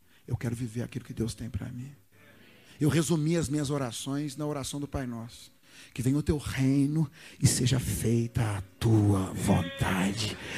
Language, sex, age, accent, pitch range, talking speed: Portuguese, male, 40-59, Brazilian, 120-185 Hz, 170 wpm